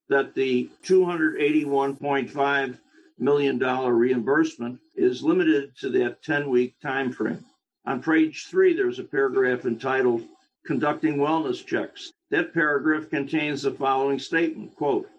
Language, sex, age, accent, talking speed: English, male, 60-79, American, 115 wpm